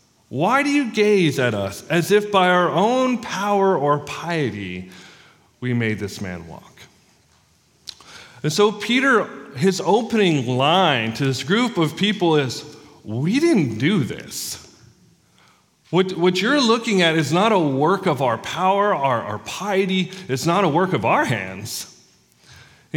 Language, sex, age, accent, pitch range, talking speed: English, male, 40-59, American, 120-190 Hz, 150 wpm